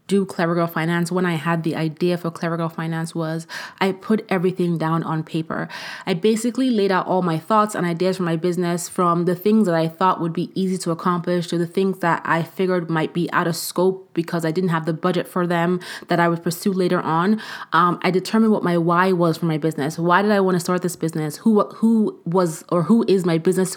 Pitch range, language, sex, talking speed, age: 165-190 Hz, English, female, 235 wpm, 20-39